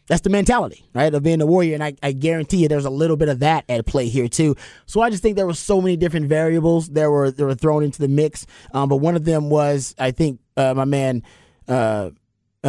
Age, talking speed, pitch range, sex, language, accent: 30-49, 250 wpm, 140-180 Hz, male, English, American